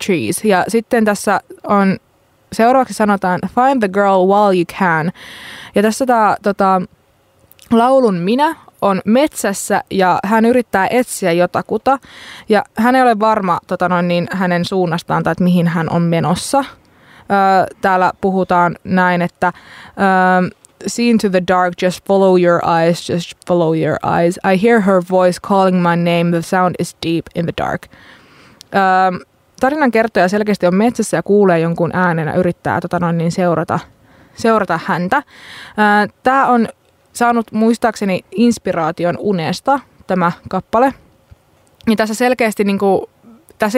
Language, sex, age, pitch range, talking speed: Finnish, female, 20-39, 180-220 Hz, 130 wpm